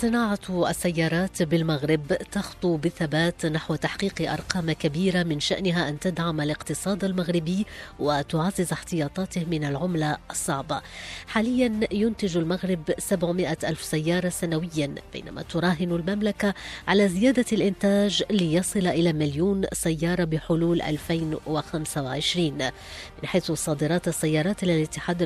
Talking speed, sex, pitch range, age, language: 105 wpm, female, 155-195 Hz, 20-39, English